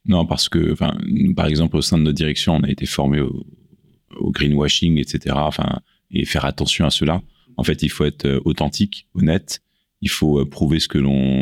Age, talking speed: 30-49, 205 wpm